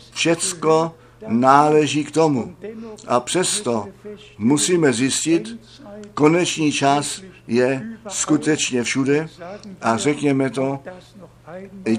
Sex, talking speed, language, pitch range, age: male, 85 wpm, Czech, 135-195 Hz, 60-79